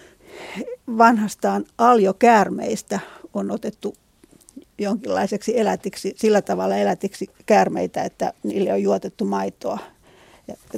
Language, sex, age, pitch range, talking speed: Finnish, female, 40-59, 195-225 Hz, 90 wpm